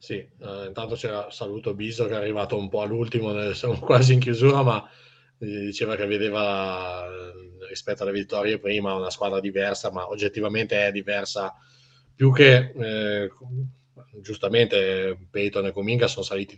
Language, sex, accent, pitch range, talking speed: Italian, male, native, 95-115 Hz, 145 wpm